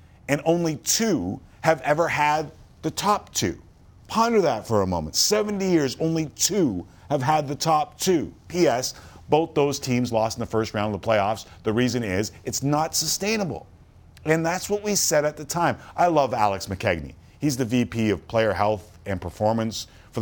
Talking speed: 185 wpm